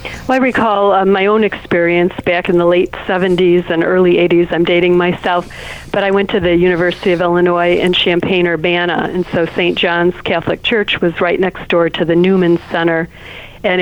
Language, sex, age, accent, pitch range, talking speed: English, female, 50-69, American, 170-185 Hz, 185 wpm